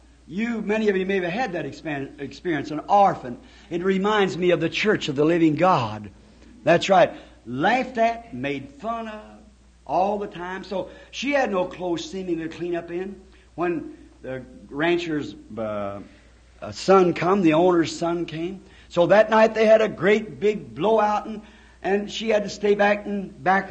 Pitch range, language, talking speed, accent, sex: 150-210 Hz, English, 175 wpm, American, male